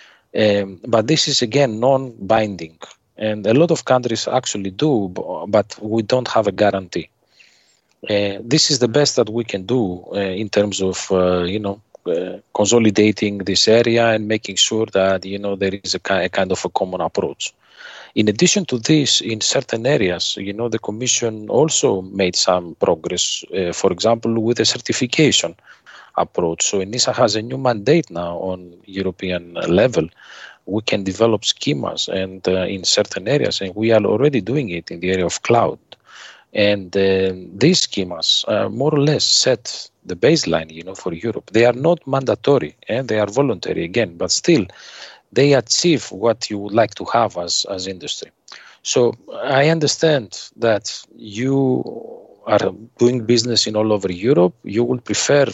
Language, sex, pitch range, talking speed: English, male, 95-125 Hz, 175 wpm